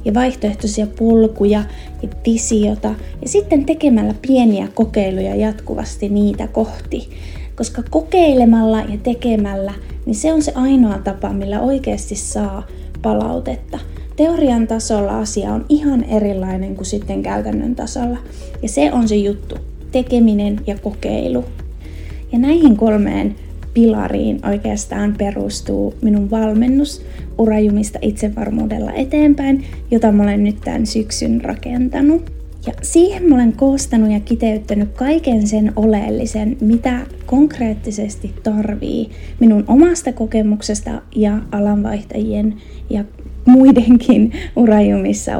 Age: 30-49